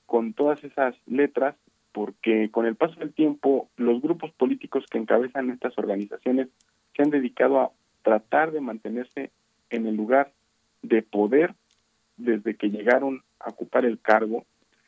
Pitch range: 110-135 Hz